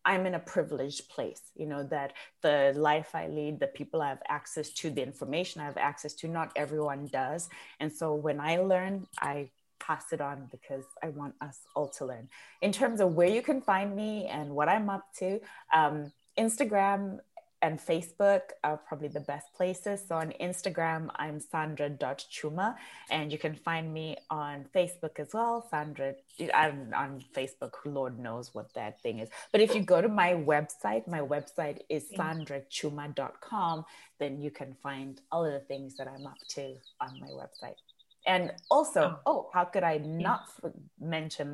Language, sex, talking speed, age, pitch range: English, female, 180 wpm, 20-39, 145-180 Hz